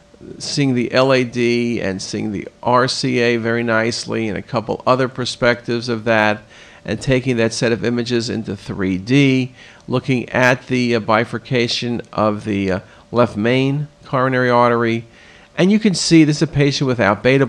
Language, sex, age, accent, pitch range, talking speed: English, male, 50-69, American, 115-150 Hz, 160 wpm